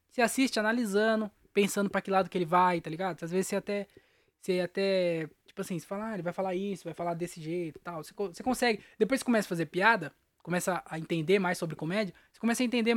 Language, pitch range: Portuguese, 190-250 Hz